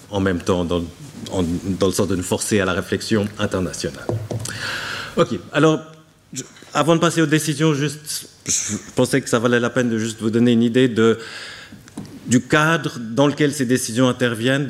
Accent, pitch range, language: French, 105-125 Hz, French